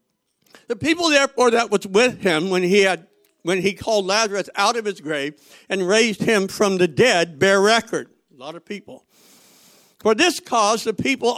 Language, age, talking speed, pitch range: English, 60-79, 185 wpm, 150-230 Hz